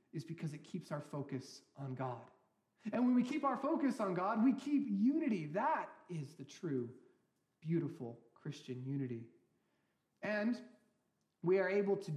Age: 30-49